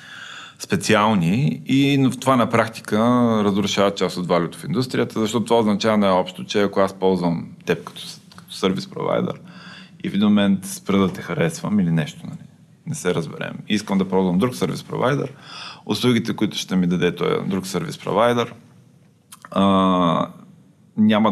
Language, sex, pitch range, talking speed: Bulgarian, male, 95-125 Hz, 140 wpm